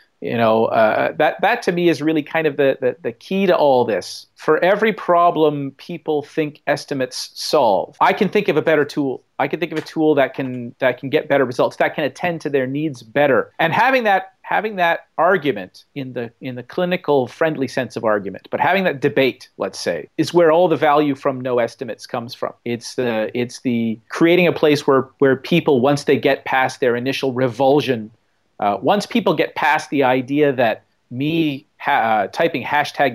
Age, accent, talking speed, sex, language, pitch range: 40-59, American, 205 wpm, male, English, 130-160 Hz